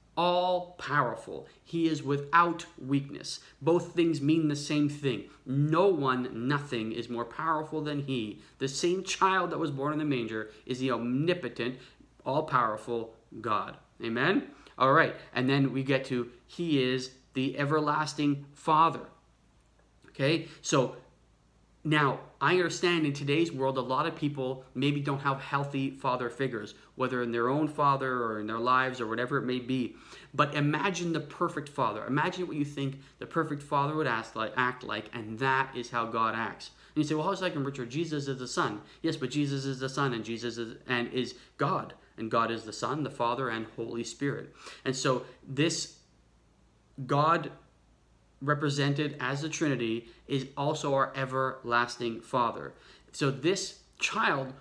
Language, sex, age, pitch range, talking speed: English, male, 30-49, 125-150 Hz, 165 wpm